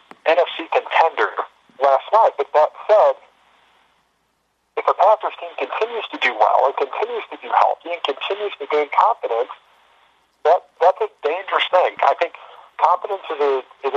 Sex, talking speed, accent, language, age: male, 155 wpm, American, English, 50-69